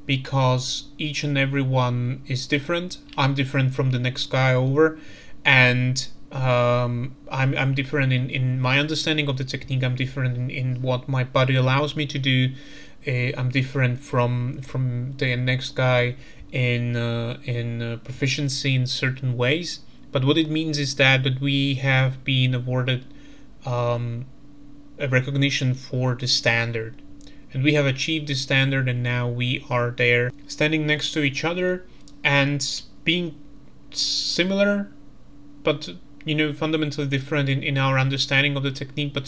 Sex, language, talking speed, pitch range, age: male, Slovak, 155 wpm, 130-145 Hz, 30-49